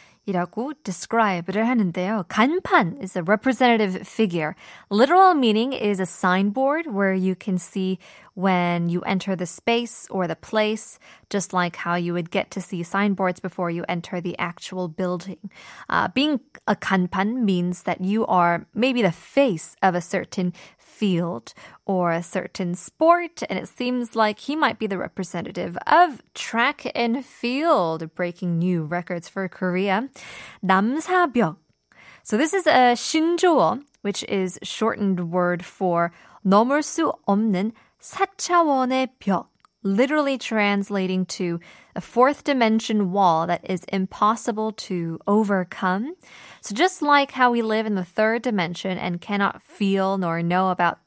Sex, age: female, 20-39